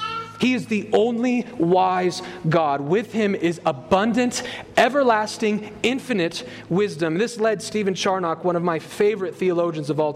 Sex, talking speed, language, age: male, 140 wpm, English, 30-49